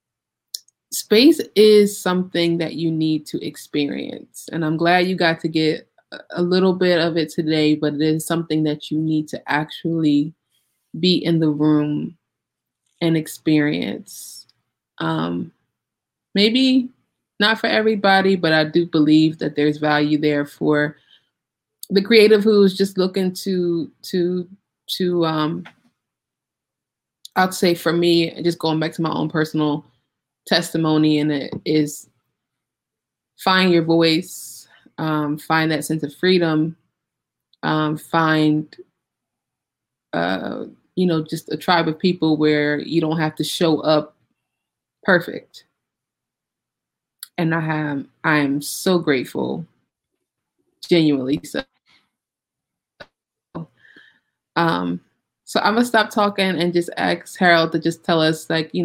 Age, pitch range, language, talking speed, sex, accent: 20-39, 155-180 Hz, English, 125 wpm, female, American